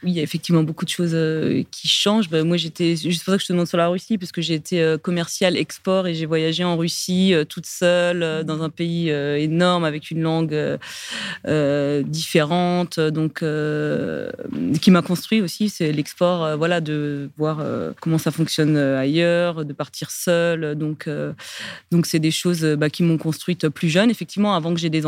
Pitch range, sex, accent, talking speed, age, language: 150-170 Hz, female, French, 185 wpm, 30-49, French